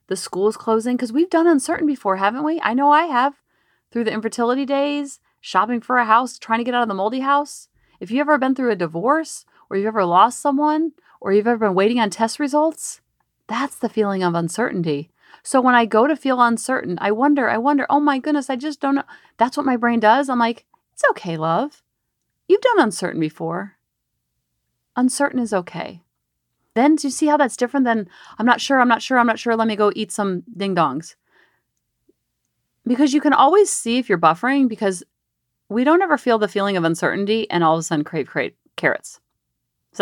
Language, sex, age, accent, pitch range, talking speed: English, female, 30-49, American, 200-280 Hz, 210 wpm